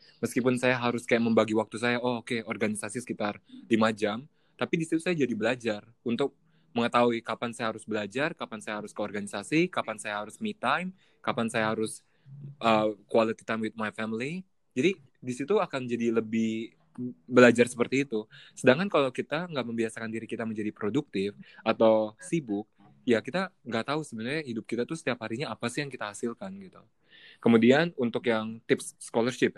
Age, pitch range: 20-39, 110-135 Hz